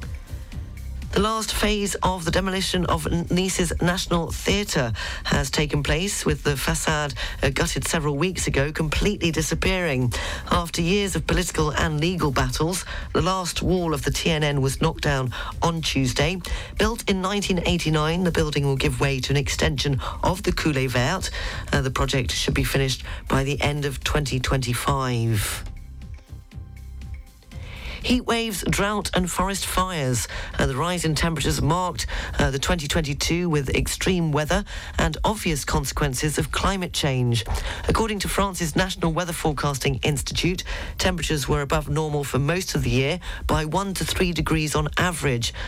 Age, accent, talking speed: 40-59, British, 150 wpm